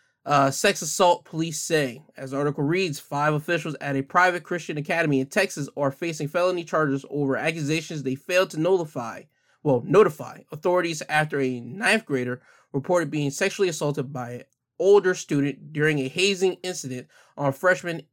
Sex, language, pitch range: male, English, 140-180 Hz